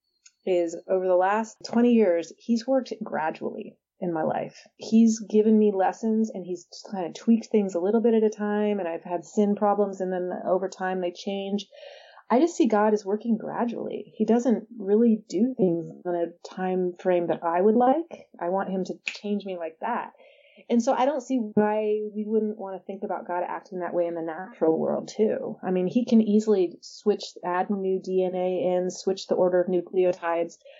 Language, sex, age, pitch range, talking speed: English, female, 30-49, 180-230 Hz, 200 wpm